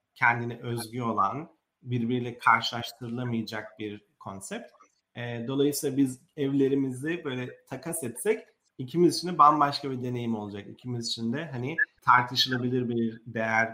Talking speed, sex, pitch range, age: 120 wpm, male, 115-145 Hz, 40-59